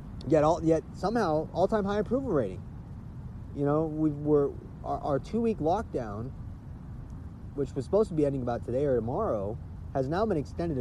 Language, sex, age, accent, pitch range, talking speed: English, male, 30-49, American, 110-160 Hz, 180 wpm